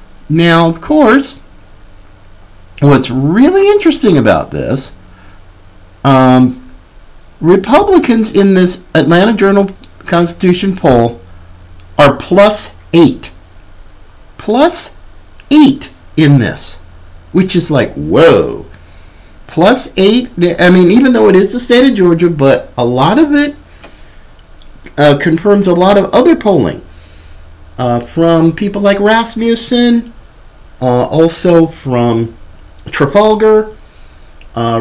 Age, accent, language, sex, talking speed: 50-69, American, English, male, 105 wpm